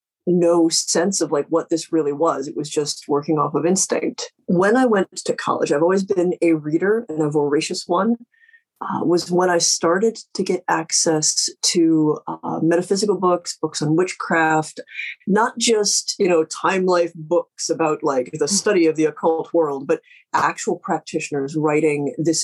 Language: English